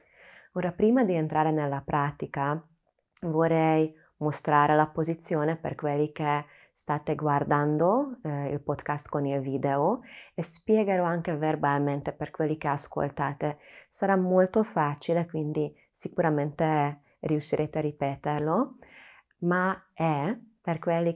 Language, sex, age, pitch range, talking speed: Italian, female, 20-39, 145-170 Hz, 115 wpm